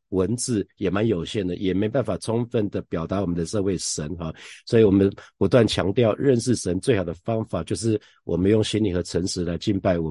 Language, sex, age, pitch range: Chinese, male, 50-69, 90-115 Hz